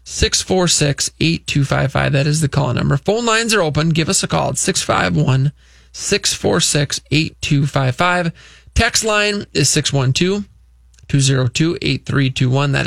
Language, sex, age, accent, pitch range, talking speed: English, male, 20-39, American, 135-160 Hz, 95 wpm